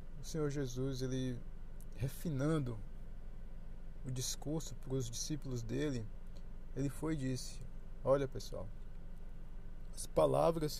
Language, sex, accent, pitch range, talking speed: Portuguese, male, Brazilian, 135-185 Hz, 105 wpm